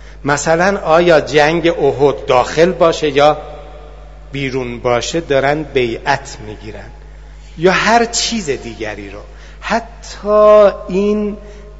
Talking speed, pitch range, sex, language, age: 95 wpm, 130-175 Hz, male, Persian, 60-79